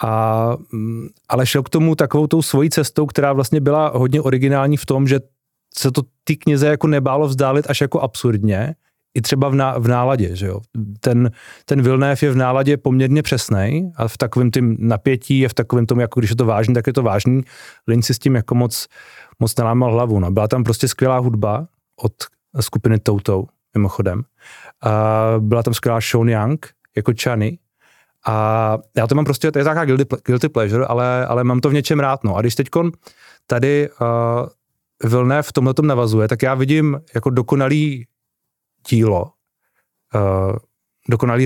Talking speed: 175 wpm